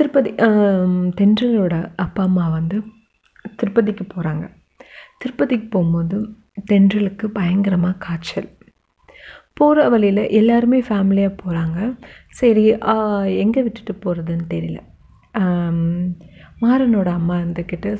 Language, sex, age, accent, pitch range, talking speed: Tamil, female, 30-49, native, 180-215 Hz, 85 wpm